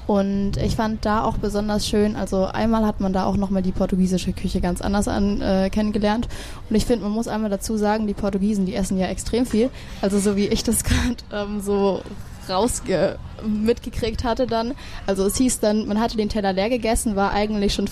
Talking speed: 210 wpm